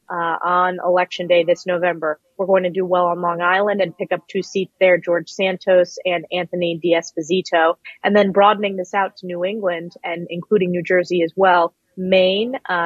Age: 20-39